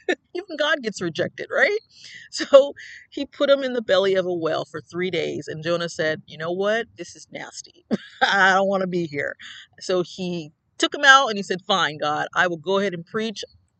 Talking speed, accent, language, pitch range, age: 215 wpm, American, English, 165-215 Hz, 40-59